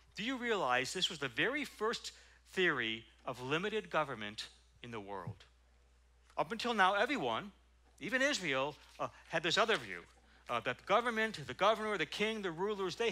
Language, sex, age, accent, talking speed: English, male, 60-79, American, 170 wpm